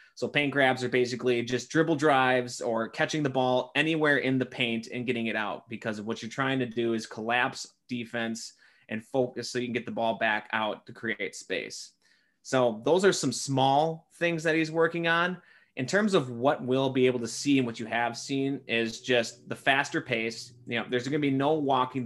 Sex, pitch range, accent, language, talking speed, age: male, 115-135 Hz, American, English, 215 wpm, 20-39